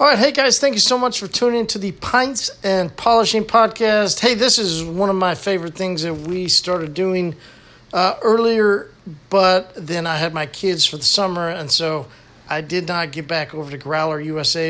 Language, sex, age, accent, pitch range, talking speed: English, male, 50-69, American, 165-205 Hz, 205 wpm